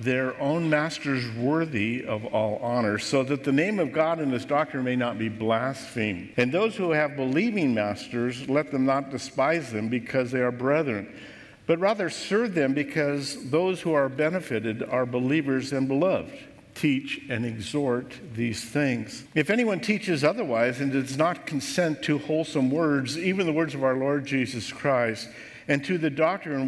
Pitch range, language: 125-160 Hz, English